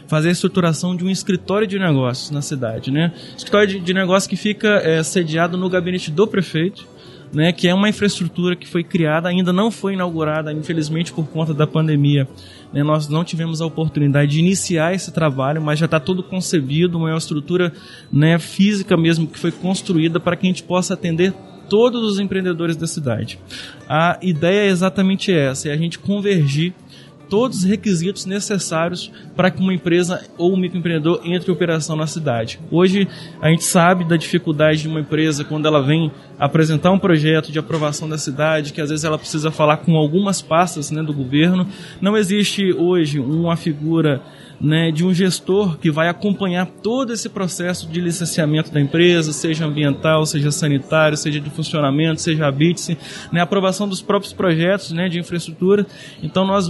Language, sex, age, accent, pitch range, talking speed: Portuguese, male, 20-39, Brazilian, 155-190 Hz, 175 wpm